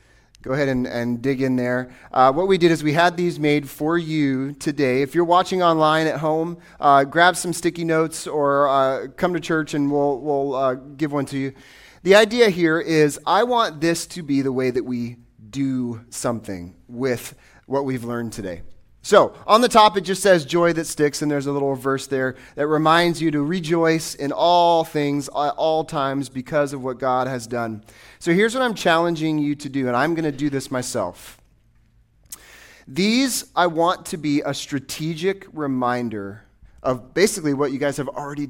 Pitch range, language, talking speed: 130-165 Hz, English, 195 wpm